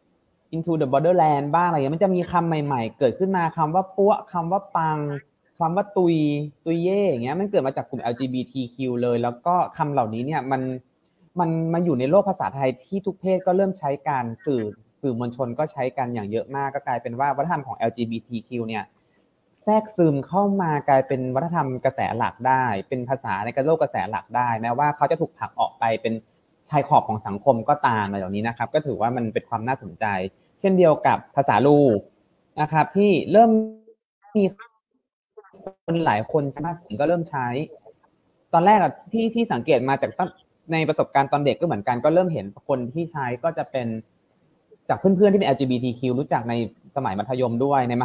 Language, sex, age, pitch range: Thai, male, 20-39, 125-170 Hz